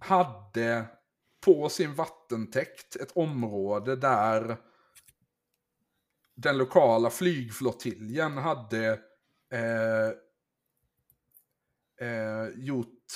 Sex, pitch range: male, 115-150 Hz